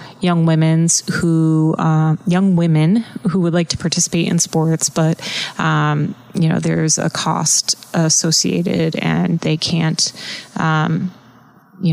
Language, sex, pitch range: English, female, 165-190 Hz